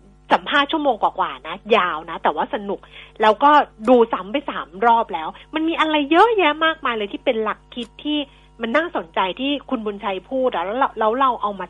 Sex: female